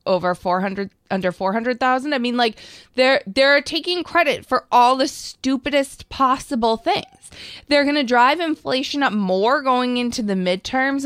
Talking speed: 150 wpm